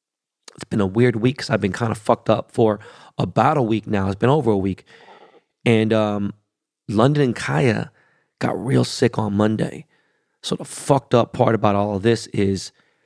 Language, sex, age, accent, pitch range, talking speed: English, male, 30-49, American, 105-120 Hz, 195 wpm